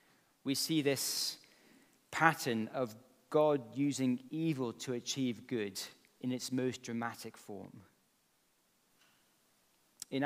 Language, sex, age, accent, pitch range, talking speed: English, male, 40-59, British, 125-170 Hz, 100 wpm